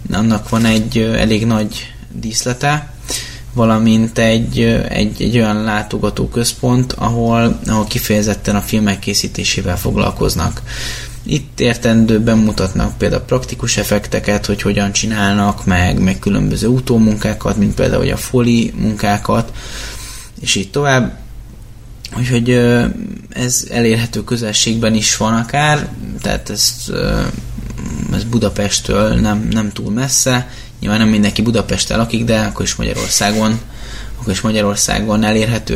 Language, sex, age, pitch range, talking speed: Hungarian, male, 20-39, 105-120 Hz, 115 wpm